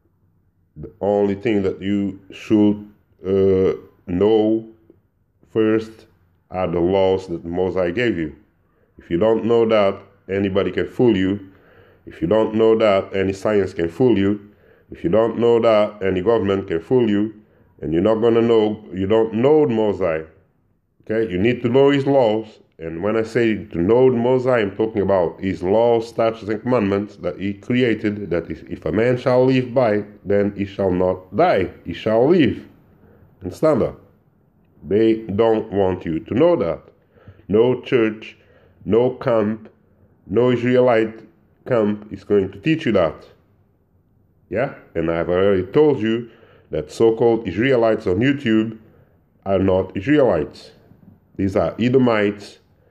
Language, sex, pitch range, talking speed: English, male, 95-115 Hz, 150 wpm